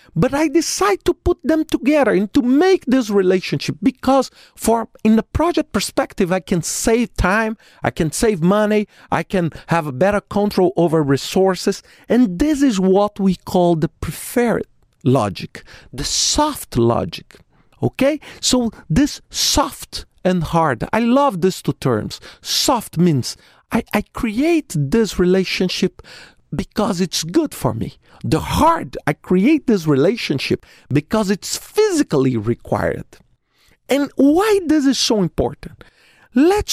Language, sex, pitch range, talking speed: English, male, 180-275 Hz, 140 wpm